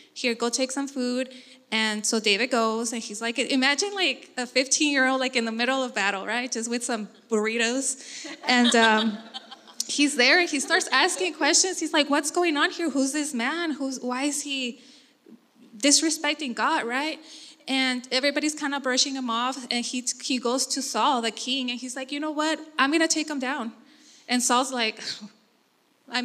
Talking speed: 190 wpm